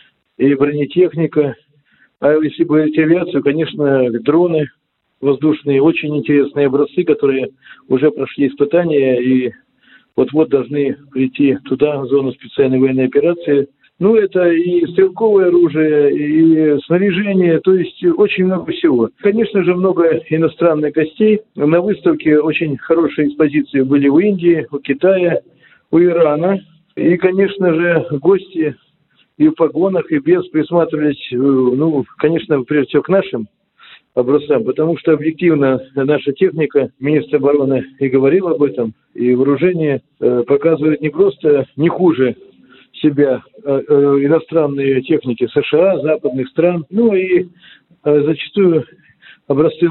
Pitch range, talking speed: 140-175 Hz, 125 wpm